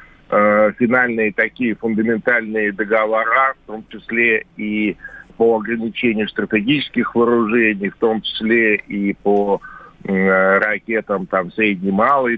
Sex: male